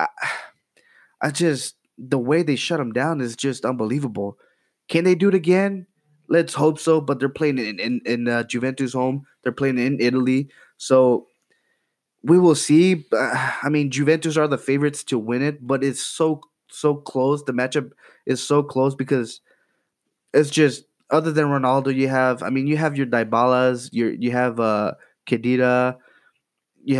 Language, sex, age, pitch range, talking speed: English, male, 20-39, 125-150 Hz, 170 wpm